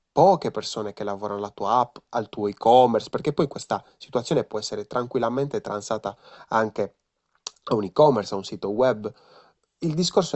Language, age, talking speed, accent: Italian, 30-49, 160 wpm, native